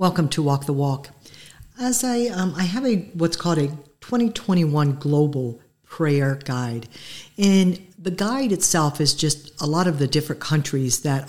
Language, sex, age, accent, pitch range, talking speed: English, female, 60-79, American, 140-180 Hz, 165 wpm